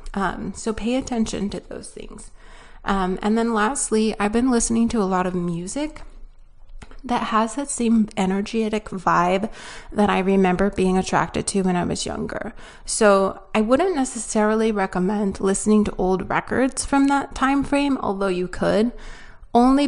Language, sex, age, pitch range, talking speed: English, female, 30-49, 185-225 Hz, 155 wpm